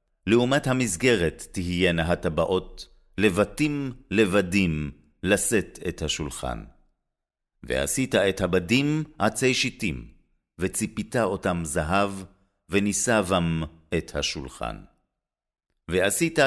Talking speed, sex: 75 wpm, male